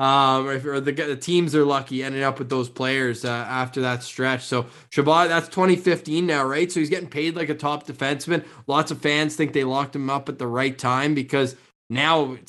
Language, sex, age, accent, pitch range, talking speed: English, male, 20-39, American, 130-155 Hz, 215 wpm